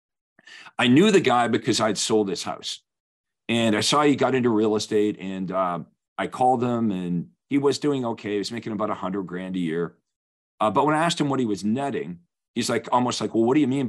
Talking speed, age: 240 wpm, 40-59